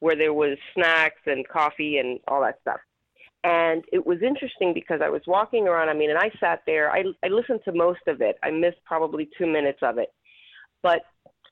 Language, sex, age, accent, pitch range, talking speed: English, female, 30-49, American, 150-205 Hz, 210 wpm